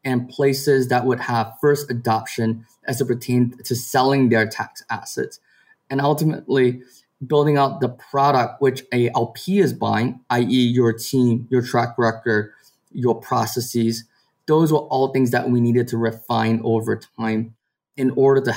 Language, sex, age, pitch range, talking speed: English, male, 20-39, 120-140 Hz, 155 wpm